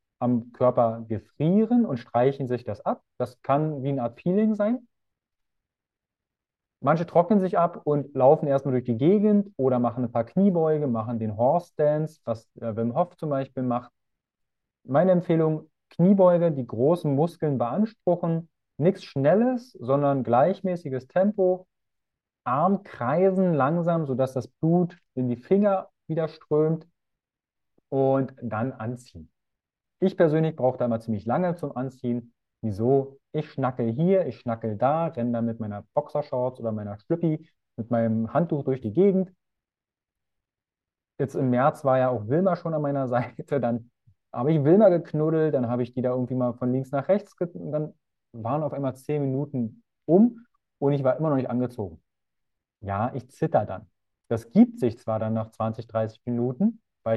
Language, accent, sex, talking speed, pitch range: German, German, male, 160 wpm, 120-165 Hz